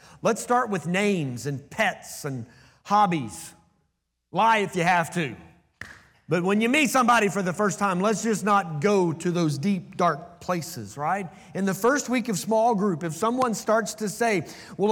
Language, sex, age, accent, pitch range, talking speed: English, male, 30-49, American, 145-215 Hz, 180 wpm